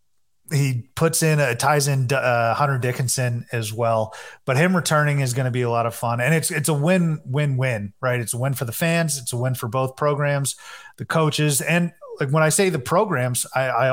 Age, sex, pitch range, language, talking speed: 30-49, male, 125-155 Hz, English, 230 wpm